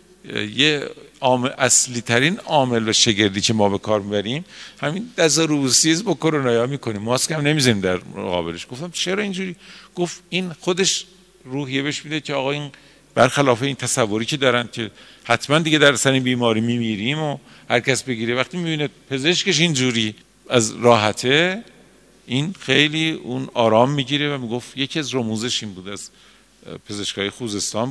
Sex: male